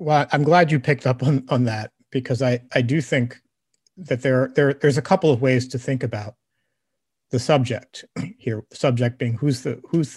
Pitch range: 120-145 Hz